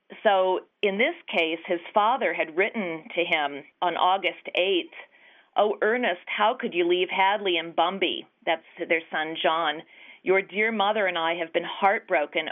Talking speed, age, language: 165 wpm, 40-59, English